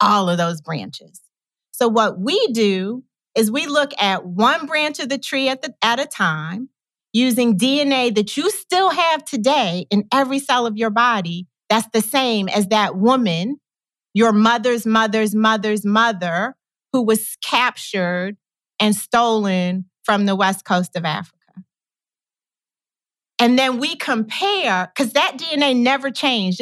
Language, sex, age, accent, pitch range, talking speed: English, female, 40-59, American, 190-245 Hz, 150 wpm